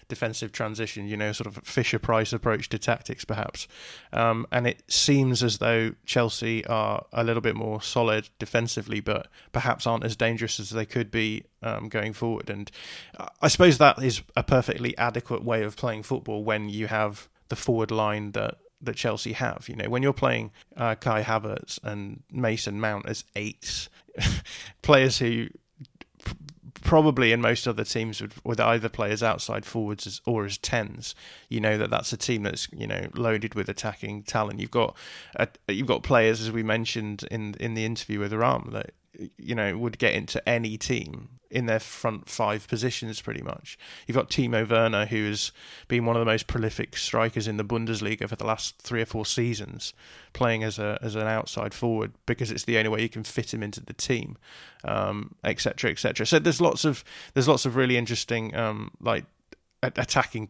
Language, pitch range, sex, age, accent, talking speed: English, 110-120 Hz, male, 20-39, British, 190 wpm